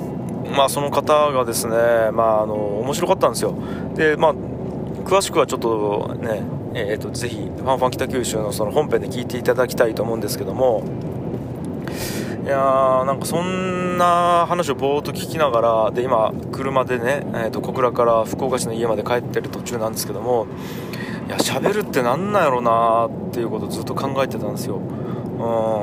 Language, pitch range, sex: Japanese, 115-150 Hz, male